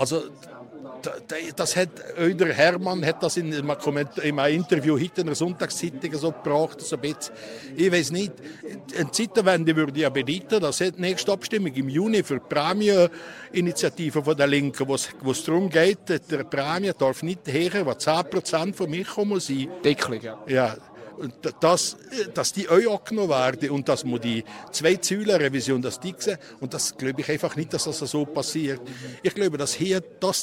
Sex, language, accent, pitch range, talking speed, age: male, German, Austrian, 140-185 Hz, 175 wpm, 60-79